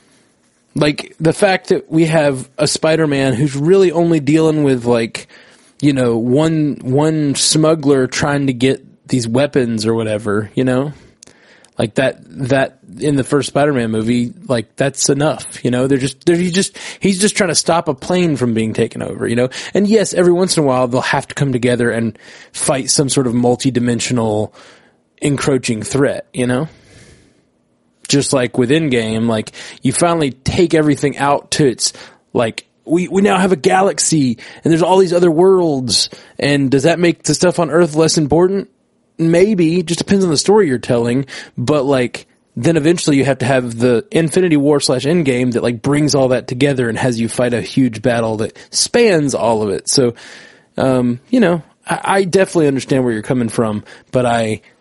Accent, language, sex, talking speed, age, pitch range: American, English, male, 190 wpm, 20-39, 125-165 Hz